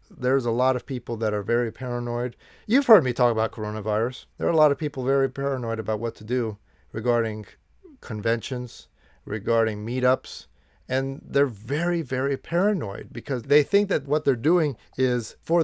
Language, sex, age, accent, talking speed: English, male, 40-59, American, 175 wpm